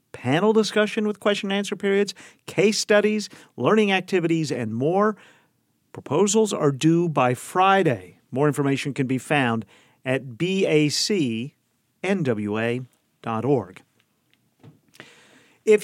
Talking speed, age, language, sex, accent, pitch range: 90 wpm, 50-69, English, male, American, 125-195 Hz